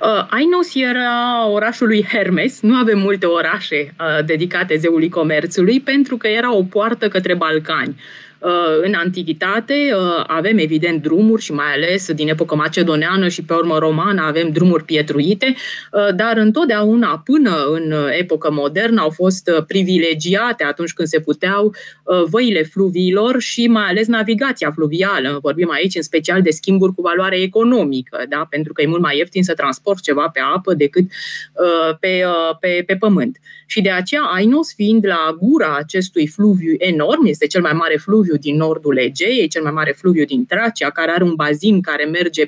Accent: native